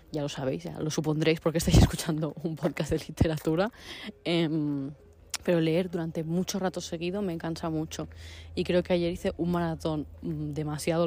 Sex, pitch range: female, 155-175 Hz